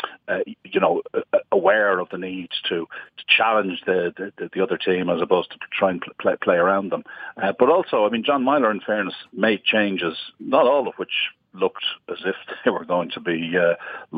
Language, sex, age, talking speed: English, male, 50-69, 205 wpm